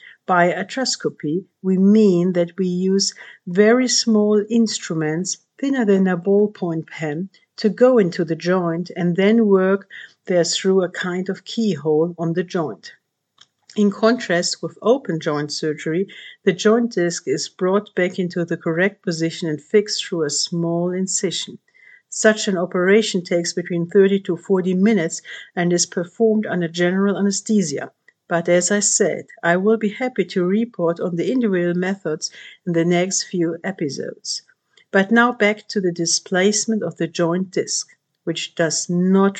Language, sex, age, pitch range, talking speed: English, female, 50-69, 170-205 Hz, 155 wpm